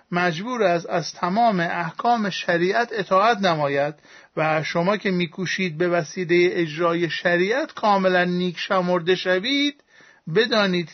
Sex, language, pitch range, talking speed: male, Persian, 165-200 Hz, 120 wpm